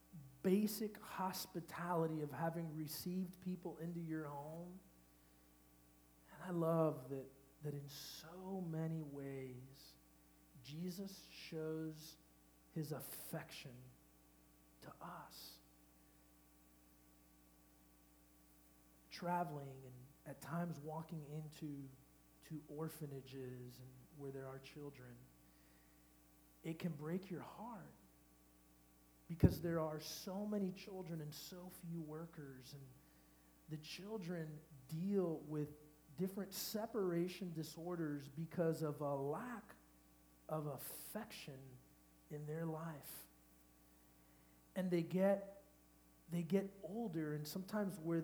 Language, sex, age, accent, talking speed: English, male, 50-69, American, 95 wpm